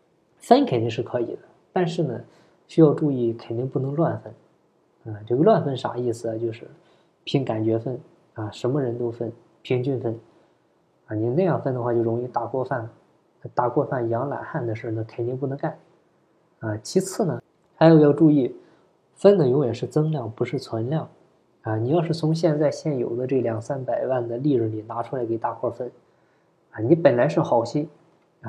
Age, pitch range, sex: 20-39, 120-160 Hz, male